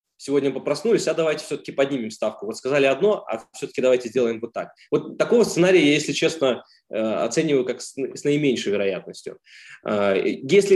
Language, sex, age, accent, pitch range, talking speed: Russian, male, 20-39, native, 125-170 Hz, 155 wpm